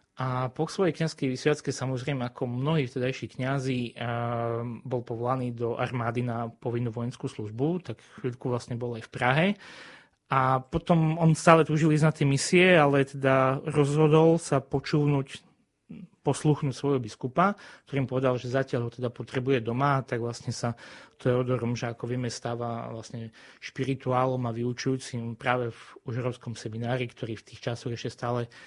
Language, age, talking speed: Slovak, 20-39, 150 wpm